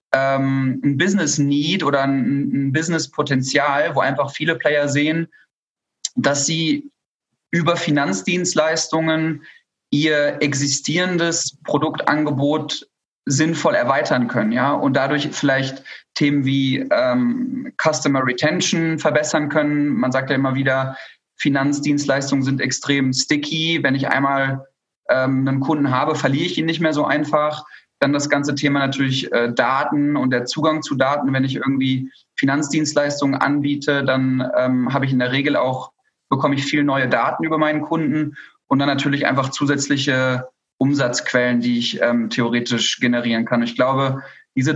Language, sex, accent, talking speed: German, male, German, 135 wpm